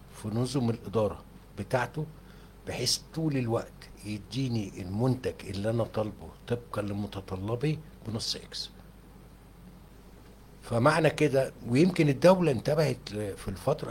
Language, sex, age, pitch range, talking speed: Arabic, male, 60-79, 110-155 Hz, 95 wpm